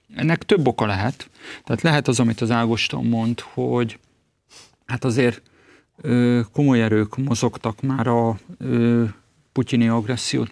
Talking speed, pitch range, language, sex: 130 wpm, 120-140 Hz, Hungarian, male